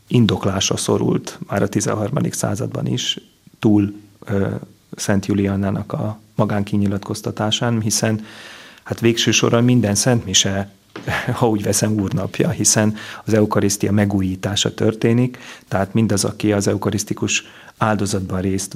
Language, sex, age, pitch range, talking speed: Hungarian, male, 30-49, 100-110 Hz, 110 wpm